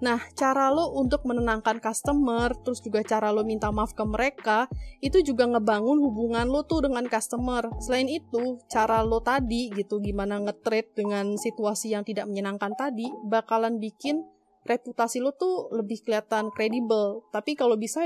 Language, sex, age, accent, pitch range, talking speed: Indonesian, female, 20-39, native, 210-265 Hz, 155 wpm